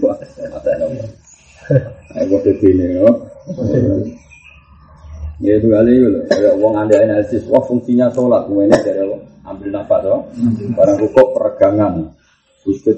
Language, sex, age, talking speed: Indonesian, male, 30-49, 105 wpm